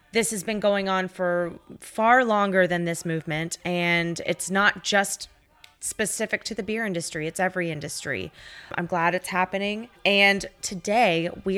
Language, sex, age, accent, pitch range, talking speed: English, female, 20-39, American, 175-210 Hz, 155 wpm